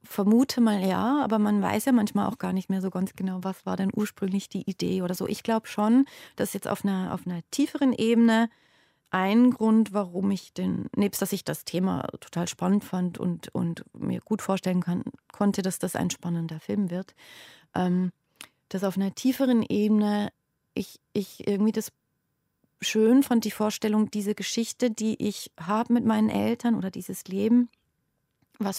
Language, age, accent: German, 30-49, German